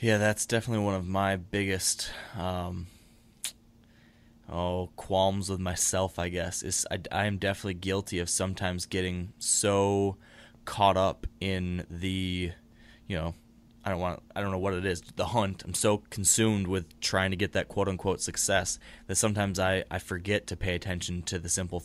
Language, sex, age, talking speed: English, male, 20-39, 175 wpm